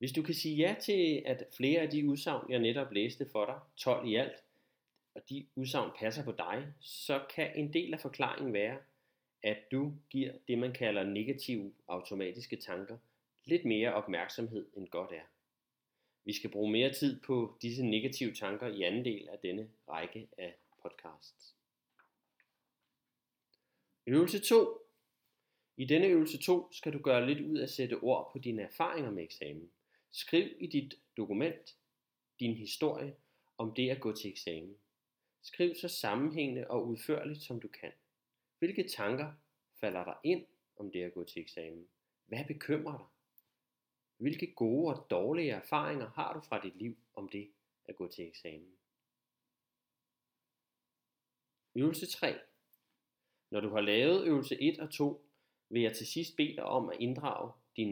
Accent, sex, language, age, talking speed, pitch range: native, male, Danish, 30-49, 160 wpm, 110-150 Hz